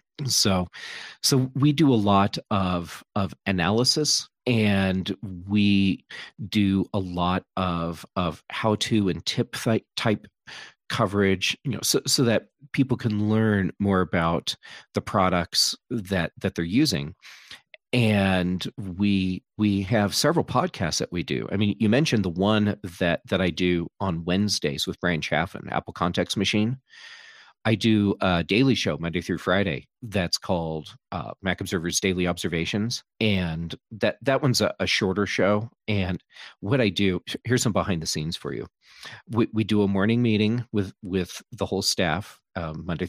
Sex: male